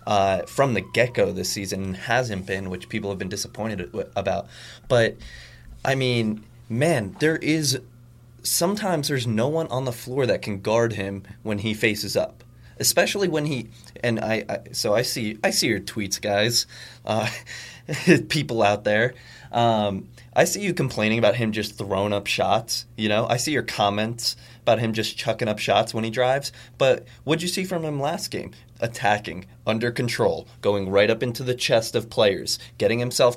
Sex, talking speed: male, 180 wpm